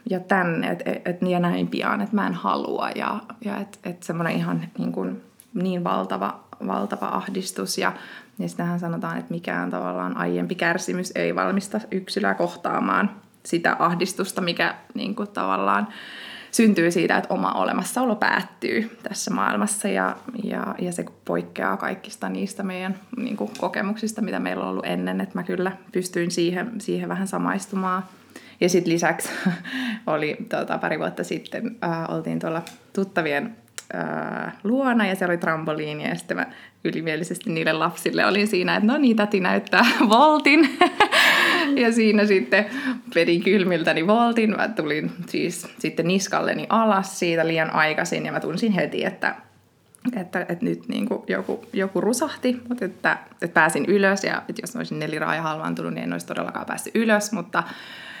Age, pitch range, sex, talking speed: 20-39, 165-220 Hz, female, 150 wpm